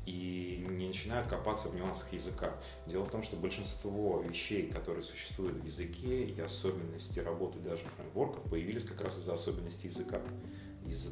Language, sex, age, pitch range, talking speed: Russian, male, 30-49, 85-100 Hz, 155 wpm